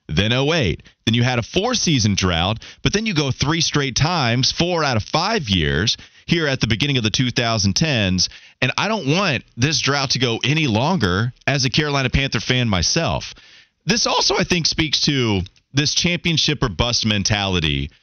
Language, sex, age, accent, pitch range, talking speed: English, male, 30-49, American, 105-145 Hz, 185 wpm